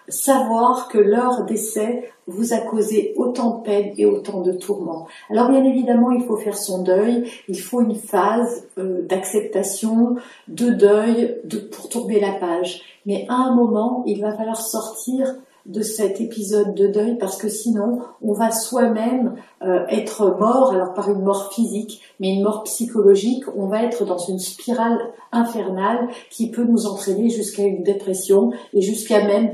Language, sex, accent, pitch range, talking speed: French, female, French, 195-235 Hz, 165 wpm